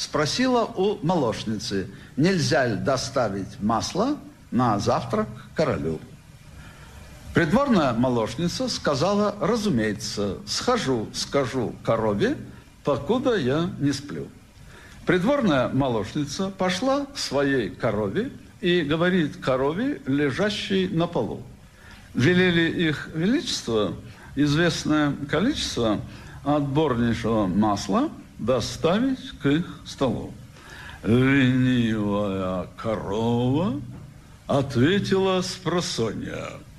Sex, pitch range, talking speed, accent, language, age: male, 115-170 Hz, 80 wpm, native, Russian, 60-79